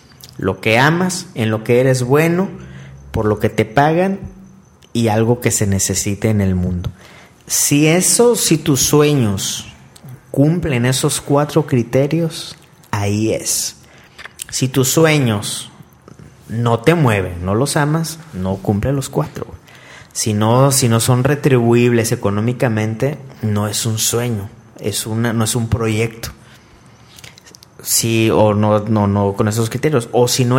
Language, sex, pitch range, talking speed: Spanish, male, 110-135 Hz, 145 wpm